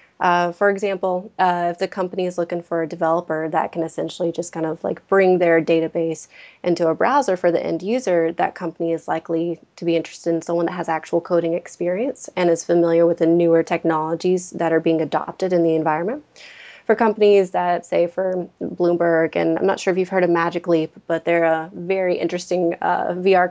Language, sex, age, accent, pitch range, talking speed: English, female, 20-39, American, 170-185 Hz, 205 wpm